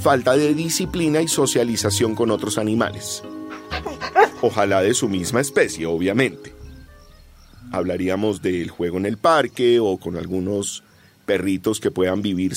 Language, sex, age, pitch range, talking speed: Spanish, male, 40-59, 105-155 Hz, 130 wpm